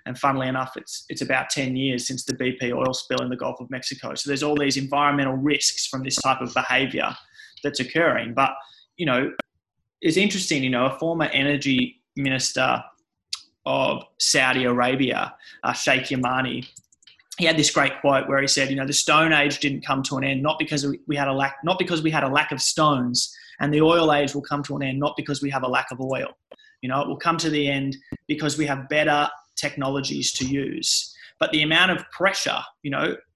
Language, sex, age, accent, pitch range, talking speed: English, male, 20-39, Australian, 135-155 Hz, 215 wpm